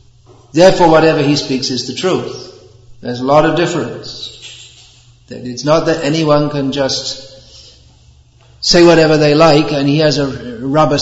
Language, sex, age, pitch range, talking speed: English, male, 50-69, 125-155 Hz, 150 wpm